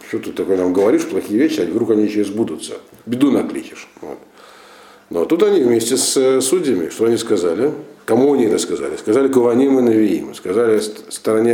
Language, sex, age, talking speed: Russian, male, 50-69, 170 wpm